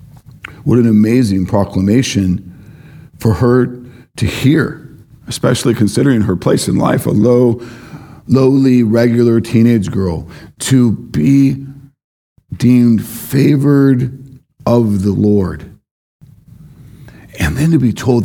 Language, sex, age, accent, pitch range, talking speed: English, male, 50-69, American, 105-140 Hz, 105 wpm